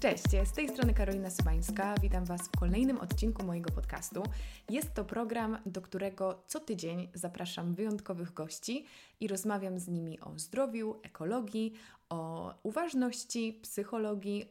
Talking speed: 135 wpm